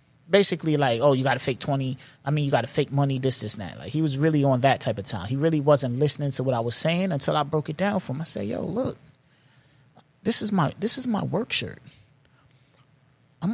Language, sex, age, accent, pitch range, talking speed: English, male, 30-49, American, 135-200 Hz, 255 wpm